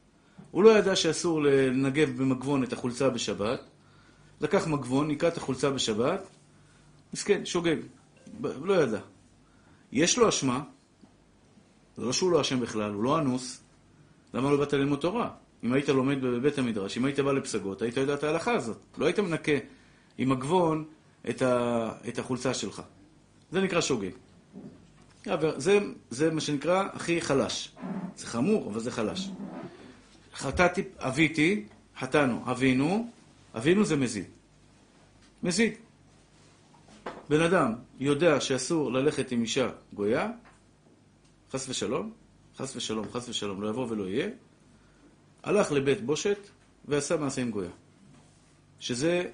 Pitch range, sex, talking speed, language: 130-175 Hz, male, 130 wpm, Hebrew